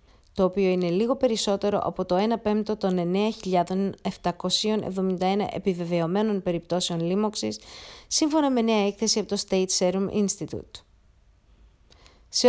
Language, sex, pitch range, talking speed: English, female, 180-225 Hz, 115 wpm